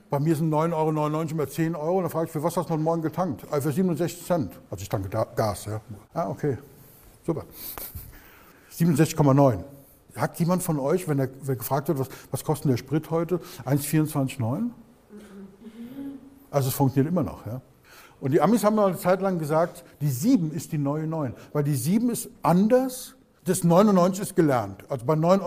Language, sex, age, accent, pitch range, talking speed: German, male, 60-79, German, 135-180 Hz, 185 wpm